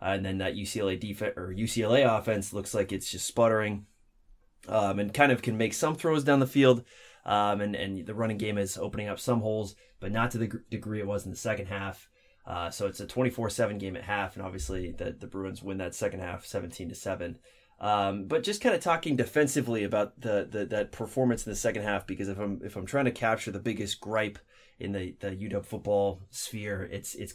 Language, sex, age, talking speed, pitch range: English, male, 20-39, 225 wpm, 100-115 Hz